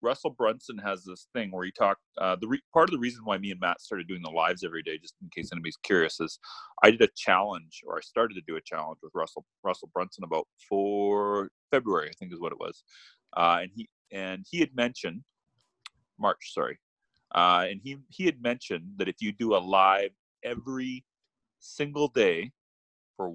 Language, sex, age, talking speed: English, male, 30-49, 205 wpm